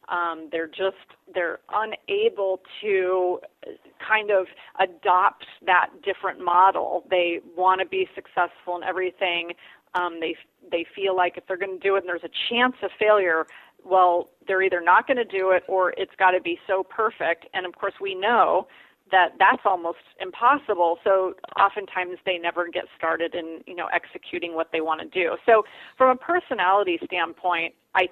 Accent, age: American, 30-49